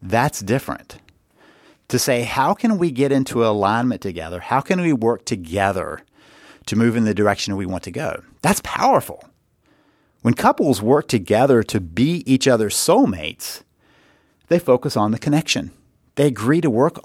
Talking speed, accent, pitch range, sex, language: 160 wpm, American, 110-135 Hz, male, English